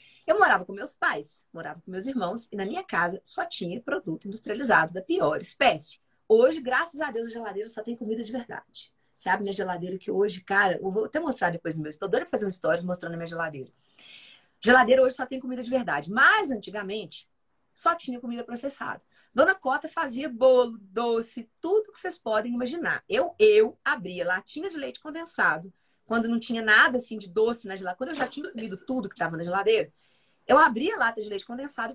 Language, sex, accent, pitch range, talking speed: Portuguese, female, Brazilian, 200-265 Hz, 210 wpm